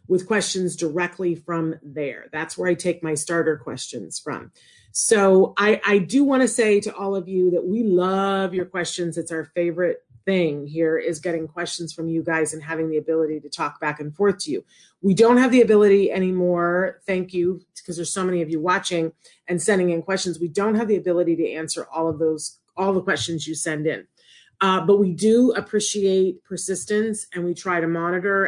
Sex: female